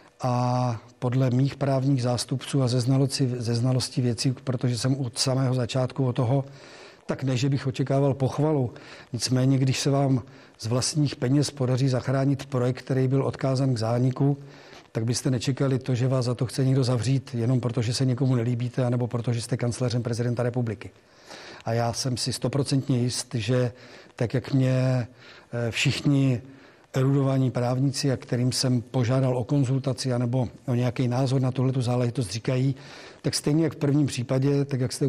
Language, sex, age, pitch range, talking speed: Czech, male, 40-59, 125-135 Hz, 165 wpm